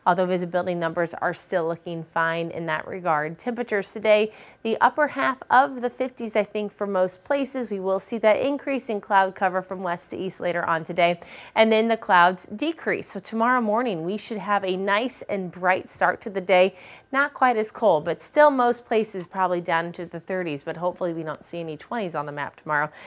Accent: American